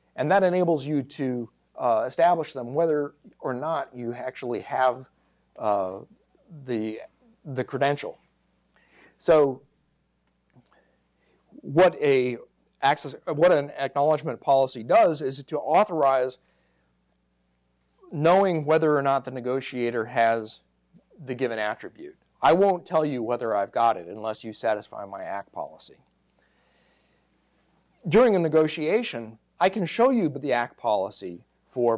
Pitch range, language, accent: 110-155 Hz, English, American